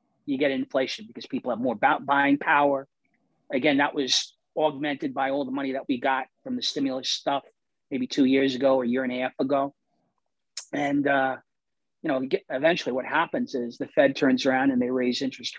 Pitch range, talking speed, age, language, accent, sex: 130-155 Hz, 200 wpm, 40-59, English, American, male